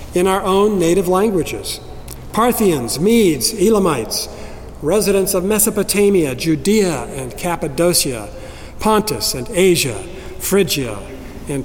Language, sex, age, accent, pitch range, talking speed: English, male, 60-79, American, 150-195 Hz, 100 wpm